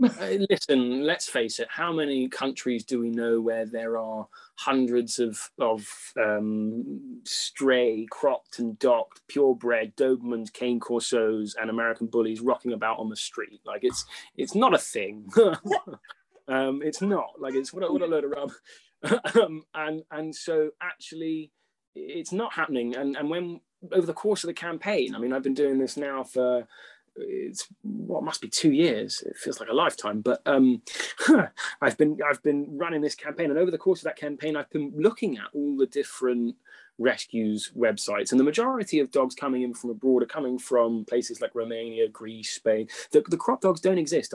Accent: British